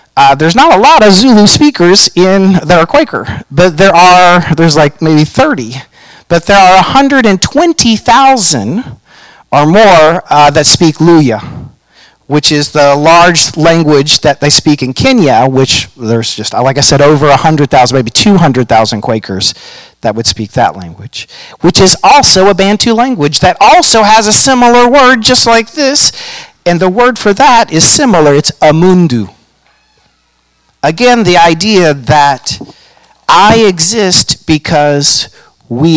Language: English